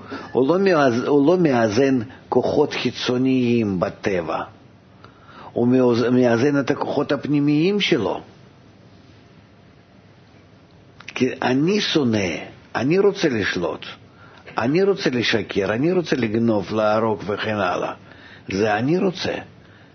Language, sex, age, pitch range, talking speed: Hebrew, male, 50-69, 105-135 Hz, 100 wpm